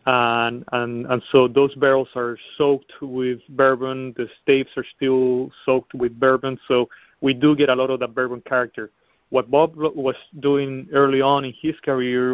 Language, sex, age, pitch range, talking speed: English, male, 30-49, 125-140 Hz, 175 wpm